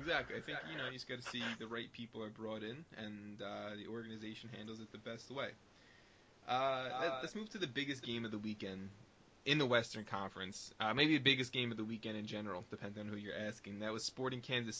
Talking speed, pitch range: 235 wpm, 105-125 Hz